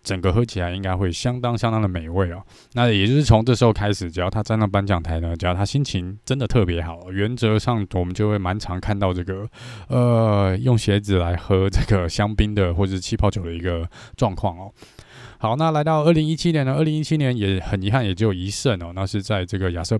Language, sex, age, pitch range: Chinese, male, 20-39, 90-115 Hz